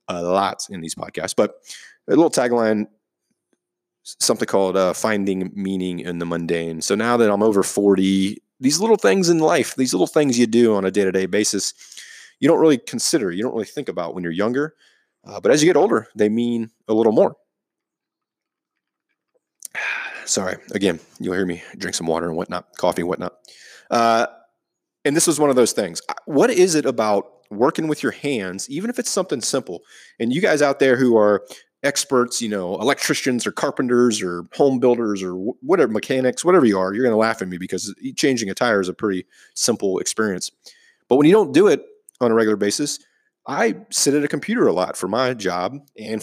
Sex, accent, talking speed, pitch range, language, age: male, American, 195 wpm, 95-135 Hz, English, 30-49